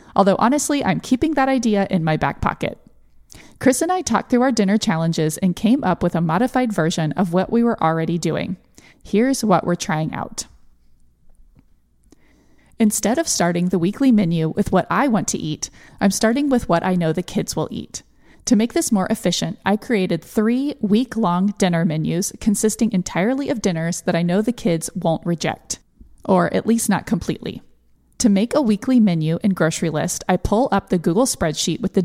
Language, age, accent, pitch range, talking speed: English, 30-49, American, 170-225 Hz, 190 wpm